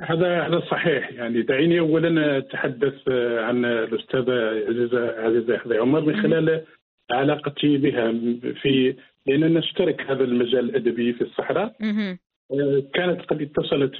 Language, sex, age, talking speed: Arabic, male, 50-69, 115 wpm